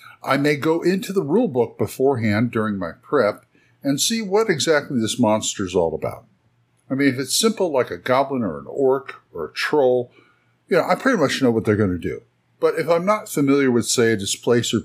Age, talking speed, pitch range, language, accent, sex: 60-79, 215 wpm, 105-150 Hz, English, American, male